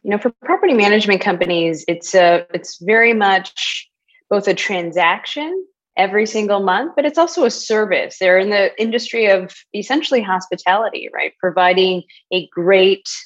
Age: 20-39